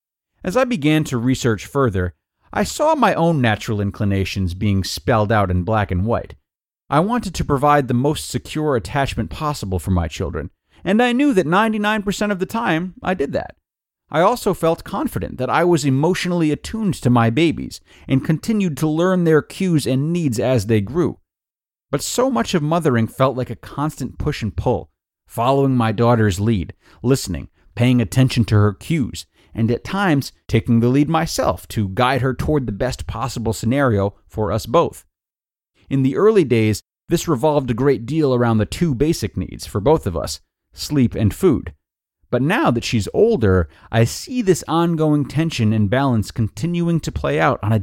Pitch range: 105-160 Hz